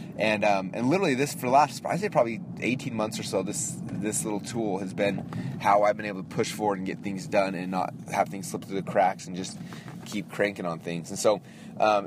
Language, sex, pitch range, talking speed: English, male, 95-120 Hz, 245 wpm